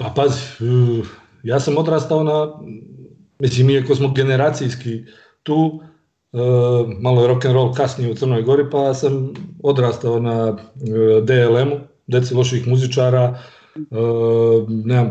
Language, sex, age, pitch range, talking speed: Croatian, male, 40-59, 120-140 Hz, 105 wpm